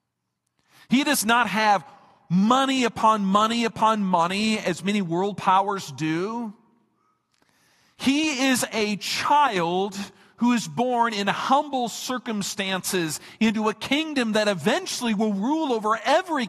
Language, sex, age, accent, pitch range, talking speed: English, male, 50-69, American, 155-230 Hz, 120 wpm